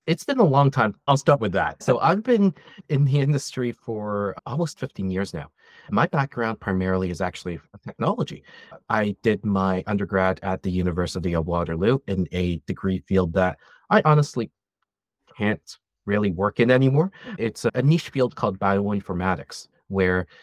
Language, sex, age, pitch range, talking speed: English, male, 30-49, 90-115 Hz, 160 wpm